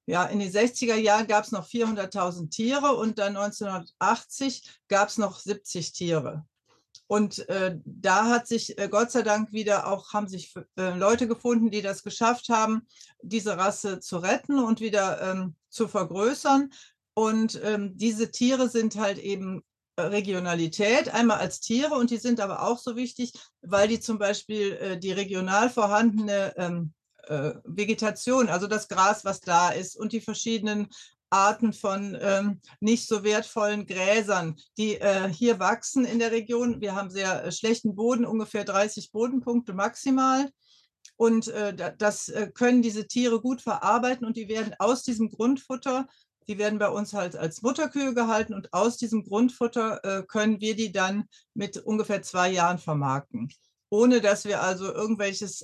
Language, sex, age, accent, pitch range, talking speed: German, female, 60-79, German, 195-230 Hz, 160 wpm